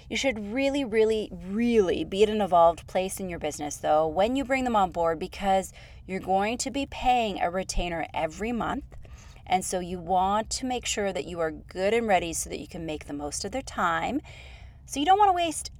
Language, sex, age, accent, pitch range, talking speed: English, female, 30-49, American, 160-235 Hz, 225 wpm